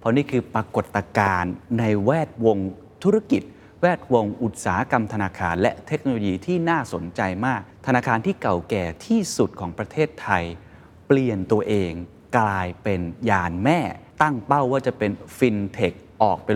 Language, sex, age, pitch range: Thai, male, 20-39, 100-130 Hz